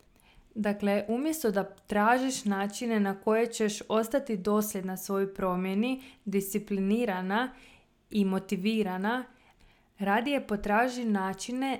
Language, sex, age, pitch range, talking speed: Croatian, female, 20-39, 195-230 Hz, 90 wpm